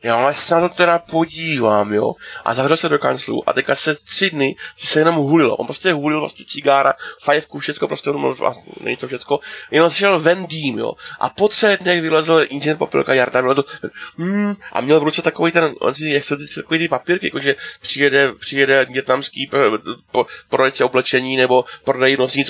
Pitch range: 130-155 Hz